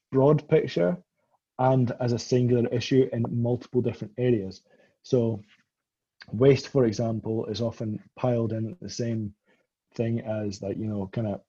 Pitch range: 110-130 Hz